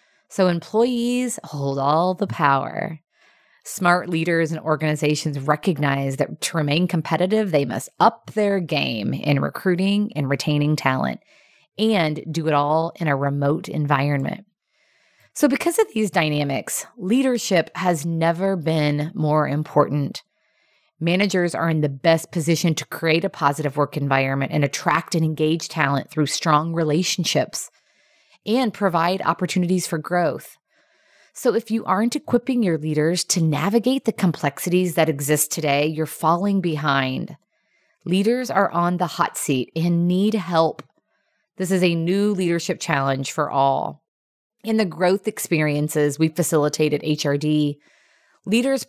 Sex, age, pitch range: female, 20-39, 150-195 Hz